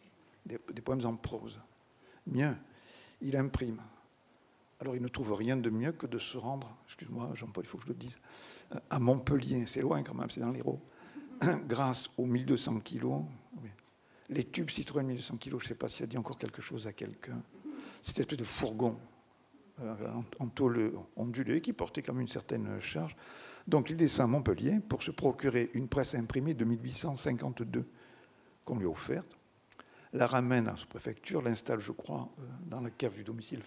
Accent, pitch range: French, 115-135 Hz